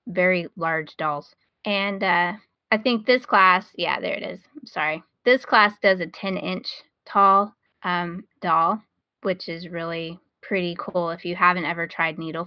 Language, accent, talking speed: English, American, 170 wpm